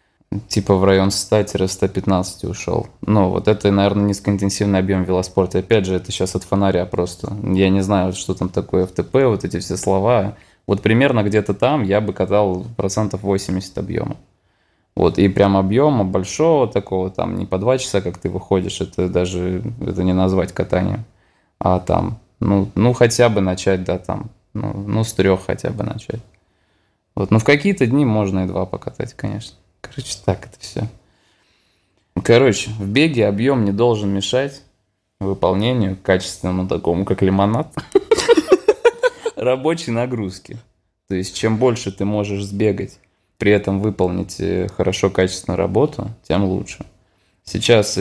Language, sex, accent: Russian, male, native